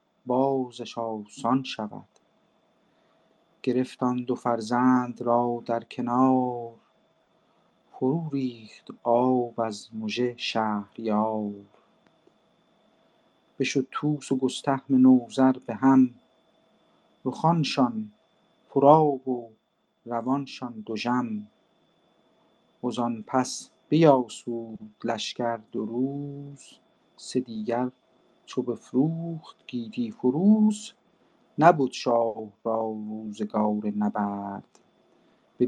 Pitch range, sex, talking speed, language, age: 115-135 Hz, male, 80 wpm, Persian, 50-69